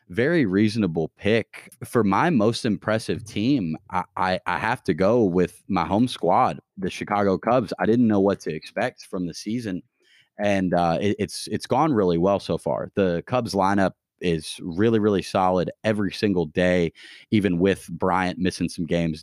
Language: English